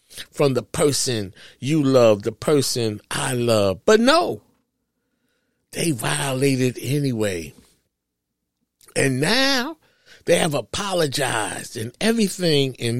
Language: English